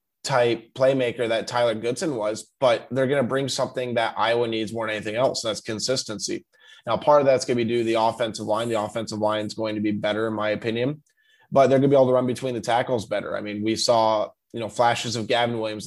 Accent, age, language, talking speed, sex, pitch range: American, 20-39, English, 250 wpm, male, 110-130 Hz